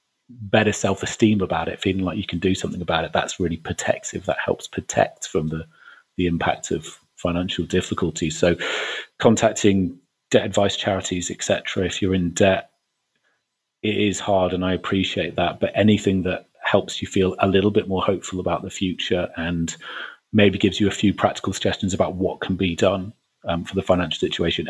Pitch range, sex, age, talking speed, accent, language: 90-100 Hz, male, 30-49, 180 wpm, British, English